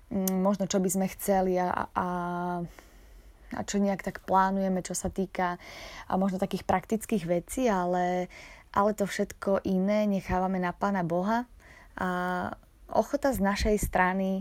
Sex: female